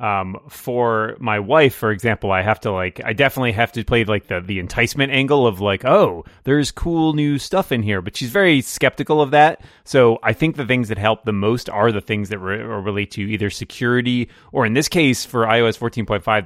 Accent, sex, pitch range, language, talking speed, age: American, male, 105-140 Hz, English, 215 wpm, 30-49